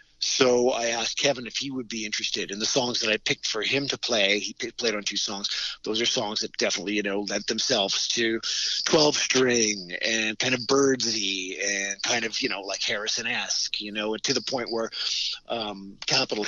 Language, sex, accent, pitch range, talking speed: English, male, American, 105-135 Hz, 200 wpm